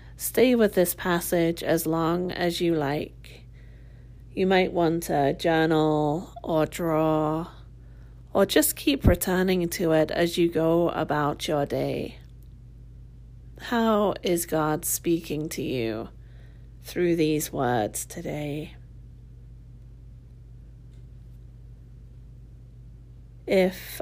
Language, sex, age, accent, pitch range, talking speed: English, female, 30-49, British, 120-165 Hz, 95 wpm